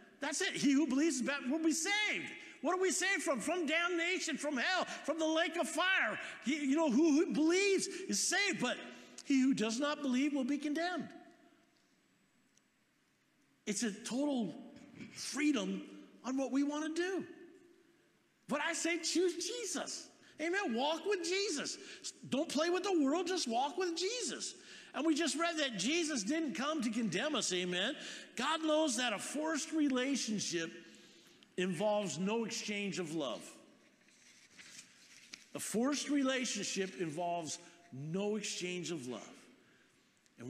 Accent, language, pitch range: American, English, 225-325 Hz